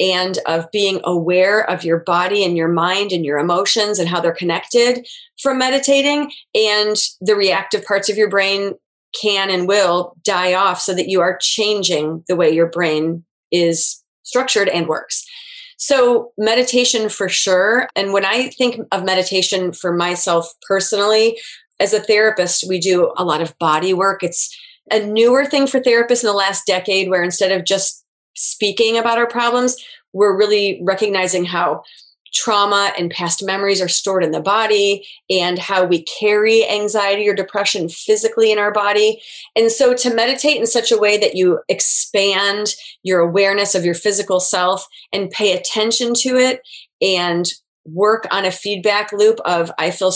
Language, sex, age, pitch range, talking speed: English, female, 30-49, 180-220 Hz, 165 wpm